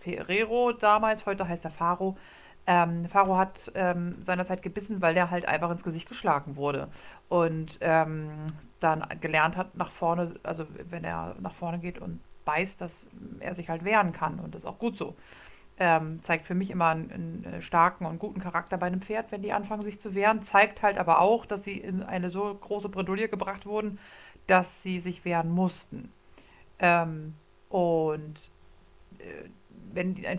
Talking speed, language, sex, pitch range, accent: 180 wpm, German, female, 170-205 Hz, German